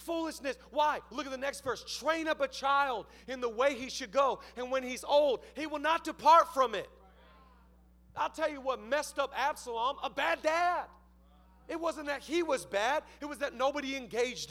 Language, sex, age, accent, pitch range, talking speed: English, male, 40-59, American, 215-280 Hz, 200 wpm